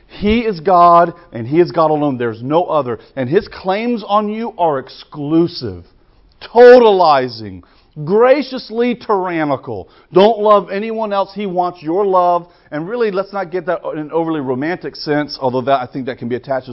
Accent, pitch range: American, 140-205 Hz